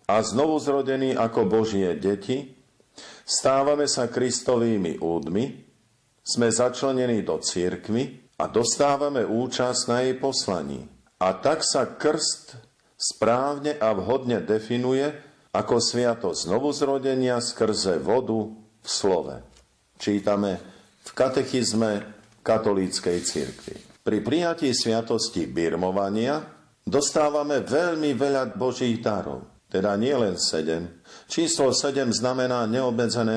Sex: male